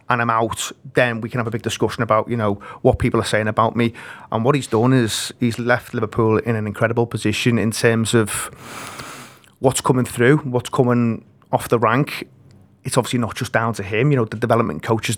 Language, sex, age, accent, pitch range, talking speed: English, male, 30-49, British, 115-130 Hz, 215 wpm